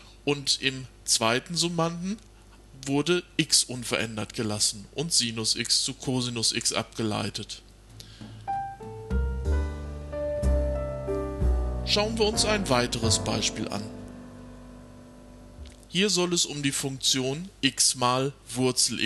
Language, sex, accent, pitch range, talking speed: German, male, German, 105-145 Hz, 100 wpm